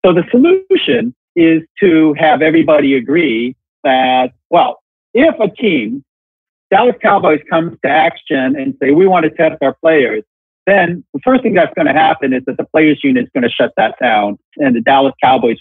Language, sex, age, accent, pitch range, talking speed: English, male, 50-69, American, 135-225 Hz, 190 wpm